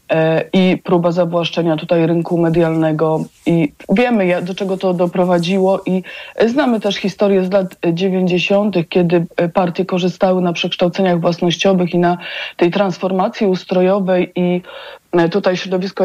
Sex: female